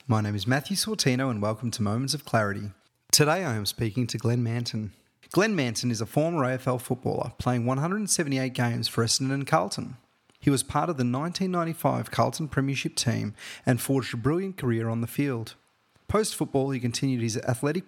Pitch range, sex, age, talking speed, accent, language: 120-150 Hz, male, 30-49, 180 wpm, Australian, English